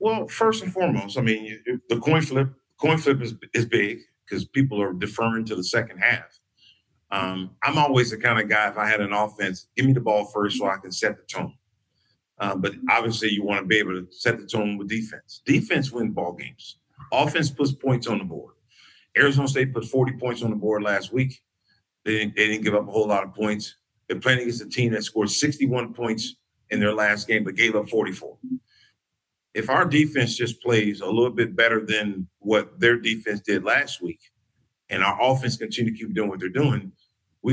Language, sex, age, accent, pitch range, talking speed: English, male, 50-69, American, 105-130 Hz, 215 wpm